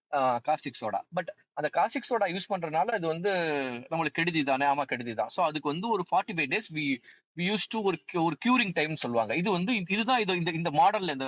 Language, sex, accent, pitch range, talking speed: Tamil, male, native, 140-175 Hz, 65 wpm